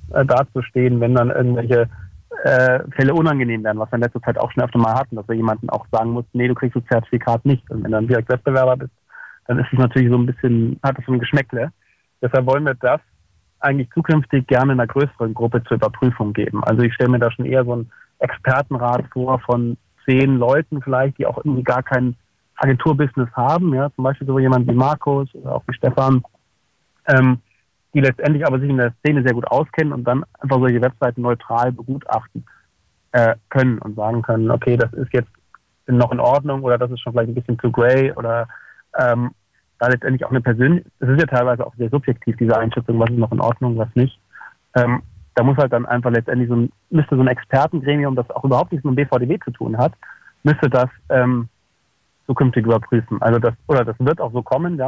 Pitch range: 120-135 Hz